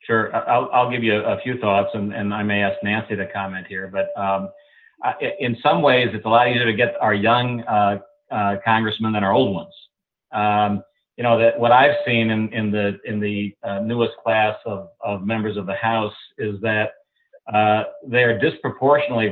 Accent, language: American, English